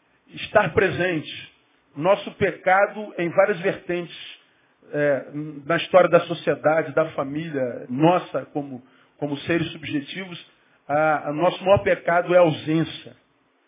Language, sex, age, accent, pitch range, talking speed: Portuguese, male, 40-59, Brazilian, 155-205 Hz, 110 wpm